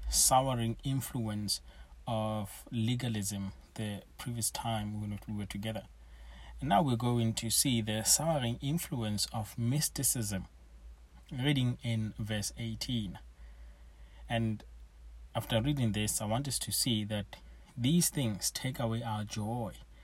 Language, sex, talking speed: English, male, 125 wpm